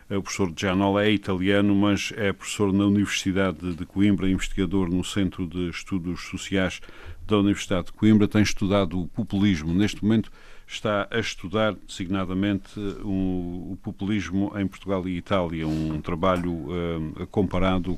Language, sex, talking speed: Portuguese, male, 135 wpm